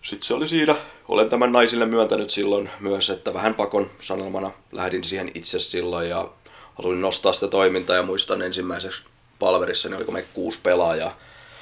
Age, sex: 20-39, male